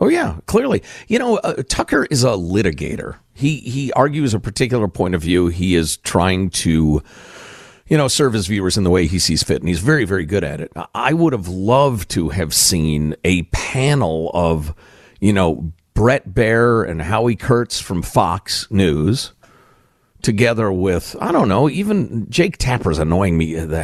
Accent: American